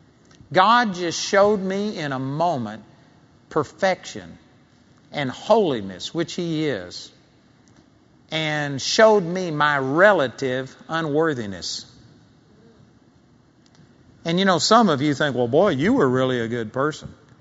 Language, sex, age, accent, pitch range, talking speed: English, male, 50-69, American, 130-170 Hz, 115 wpm